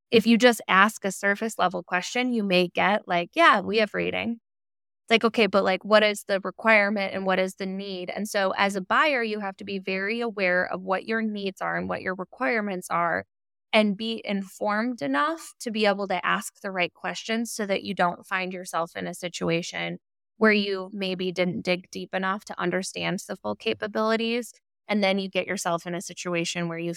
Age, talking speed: 20-39, 210 wpm